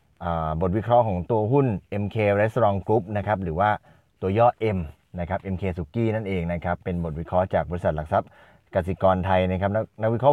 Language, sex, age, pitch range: Thai, male, 20-39, 95-115 Hz